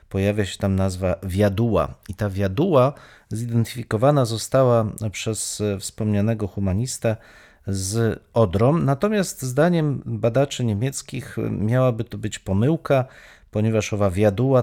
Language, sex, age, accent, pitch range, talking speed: Polish, male, 40-59, native, 100-130 Hz, 105 wpm